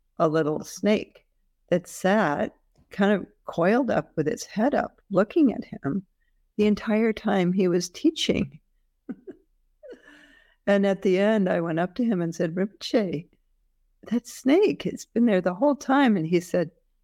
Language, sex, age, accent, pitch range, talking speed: English, female, 60-79, American, 155-190 Hz, 160 wpm